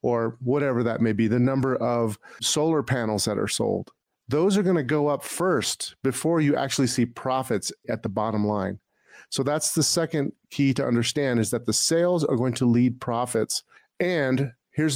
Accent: American